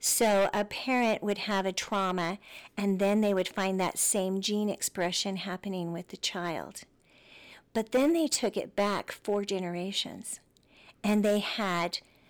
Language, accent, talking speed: English, American, 150 wpm